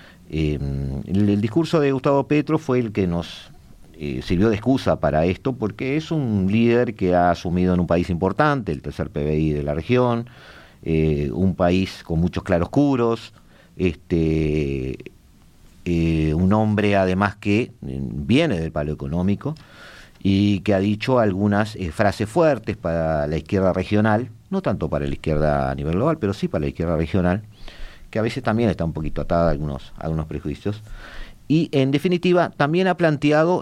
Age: 50-69